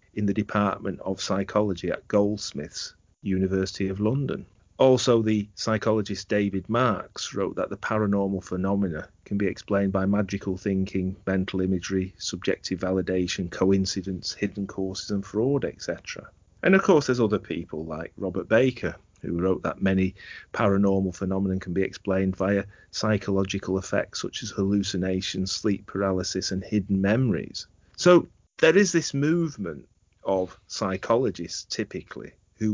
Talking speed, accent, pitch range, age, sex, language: 135 wpm, British, 95-105 Hz, 30-49, male, English